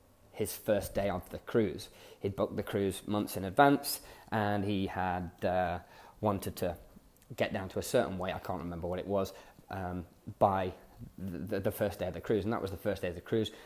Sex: male